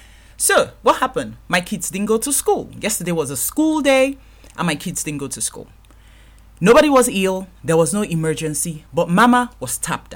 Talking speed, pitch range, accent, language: 190 wpm, 135-200 Hz, Nigerian, English